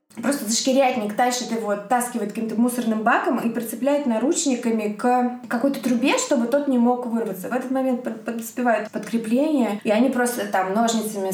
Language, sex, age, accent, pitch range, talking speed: Russian, female, 20-39, native, 205-245 Hz, 155 wpm